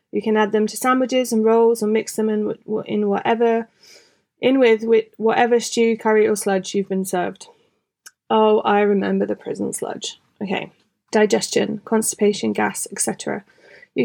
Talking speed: 150 wpm